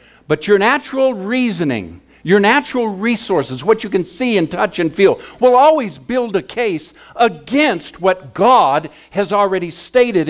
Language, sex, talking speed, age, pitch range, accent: English, male, 150 wpm, 60-79, 150-240 Hz, American